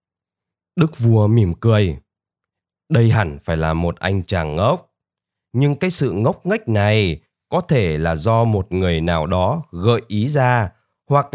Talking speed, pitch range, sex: 160 wpm, 95-140 Hz, male